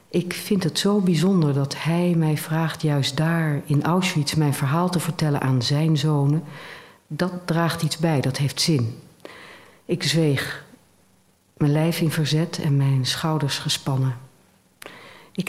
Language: Dutch